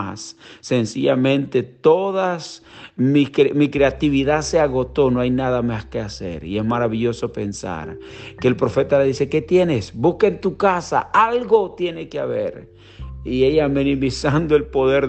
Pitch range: 105-140 Hz